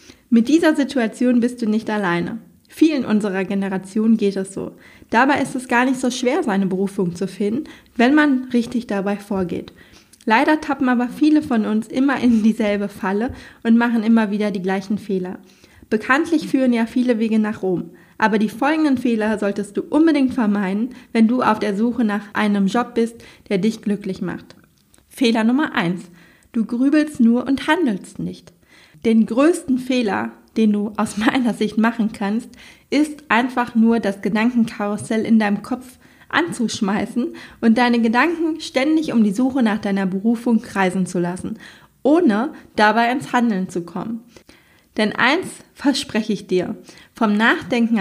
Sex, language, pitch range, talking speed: female, German, 200-250 Hz, 160 wpm